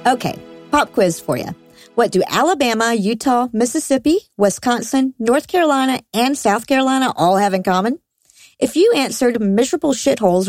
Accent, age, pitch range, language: American, 50-69, 175-245 Hz, English